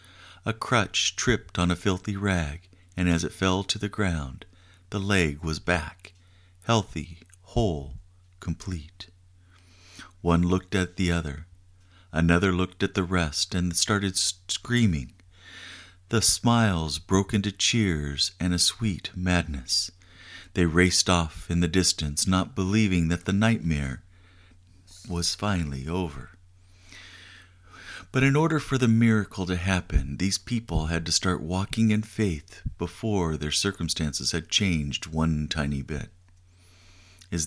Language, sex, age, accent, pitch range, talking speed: English, male, 50-69, American, 85-95 Hz, 130 wpm